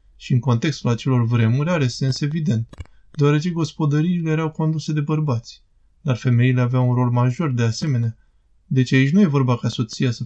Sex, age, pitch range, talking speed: male, 20-39, 115-140 Hz, 175 wpm